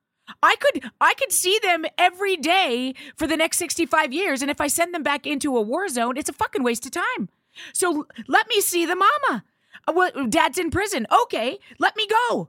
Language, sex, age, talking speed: English, female, 30-49, 205 wpm